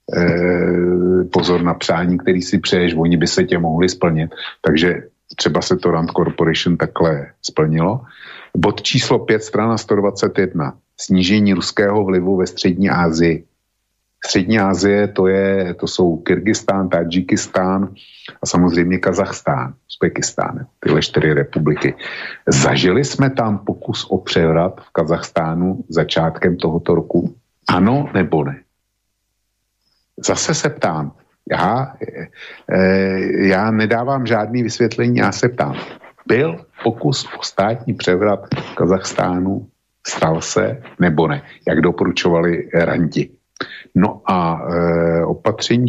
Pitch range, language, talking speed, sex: 85-100 Hz, Slovak, 115 wpm, male